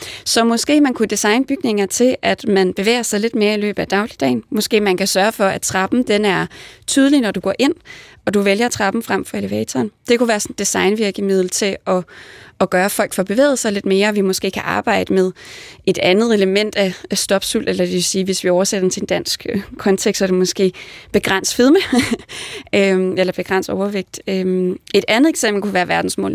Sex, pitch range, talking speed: female, 190-225 Hz, 205 wpm